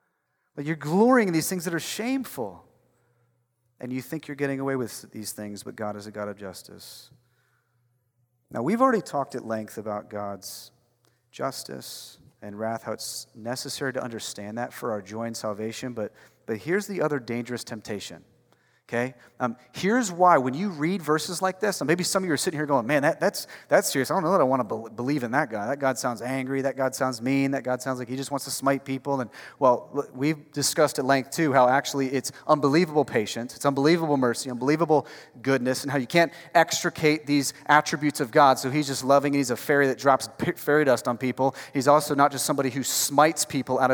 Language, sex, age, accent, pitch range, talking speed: English, male, 30-49, American, 120-150 Hz, 215 wpm